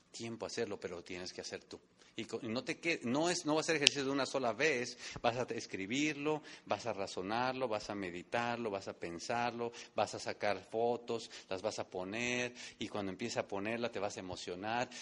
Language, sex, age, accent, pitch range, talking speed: English, male, 40-59, Mexican, 100-130 Hz, 210 wpm